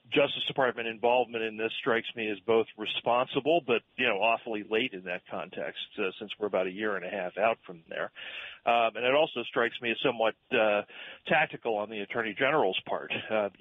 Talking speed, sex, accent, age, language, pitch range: 205 wpm, male, American, 40-59, English, 105-130 Hz